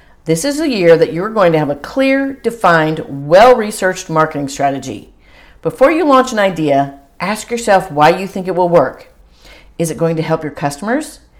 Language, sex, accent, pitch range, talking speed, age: English, female, American, 150-195 Hz, 185 wpm, 50-69